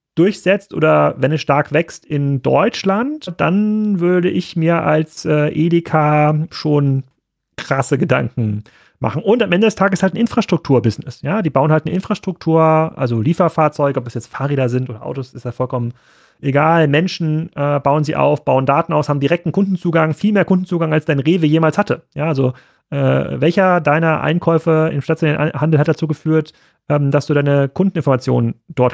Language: German